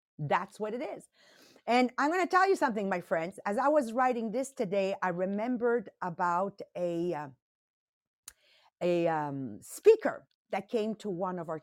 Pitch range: 175-245 Hz